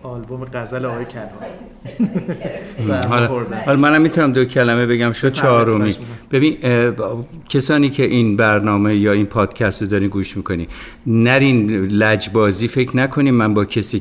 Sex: male